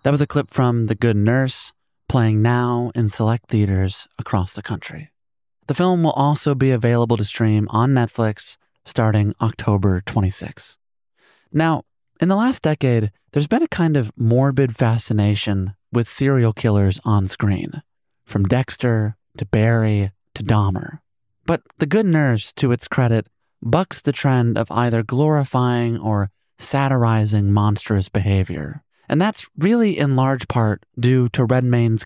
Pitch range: 105-140 Hz